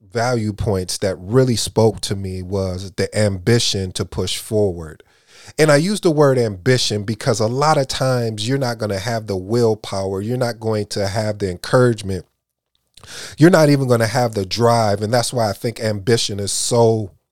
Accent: American